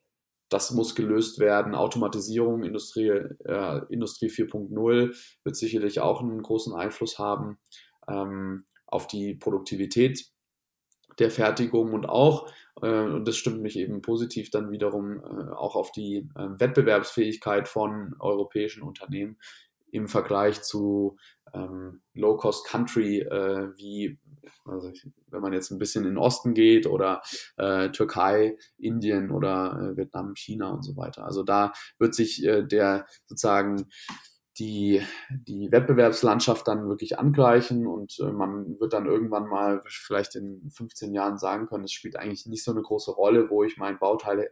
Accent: German